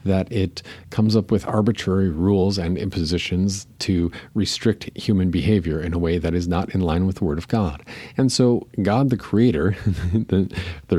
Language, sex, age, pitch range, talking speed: English, male, 50-69, 85-105 Hz, 180 wpm